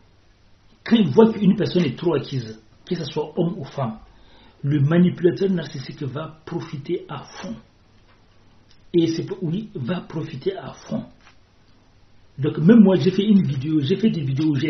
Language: French